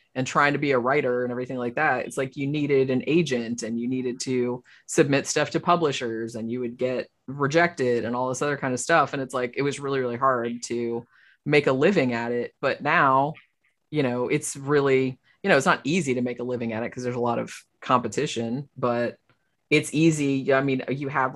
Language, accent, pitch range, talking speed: English, American, 125-150 Hz, 225 wpm